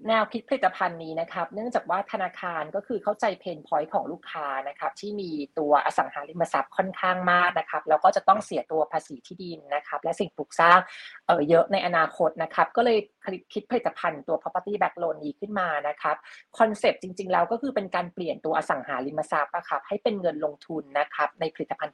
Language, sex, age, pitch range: Thai, female, 30-49, 150-200 Hz